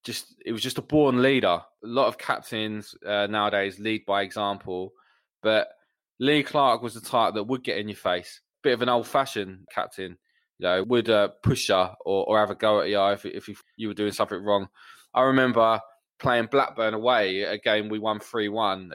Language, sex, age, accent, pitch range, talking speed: English, male, 20-39, British, 100-140 Hz, 205 wpm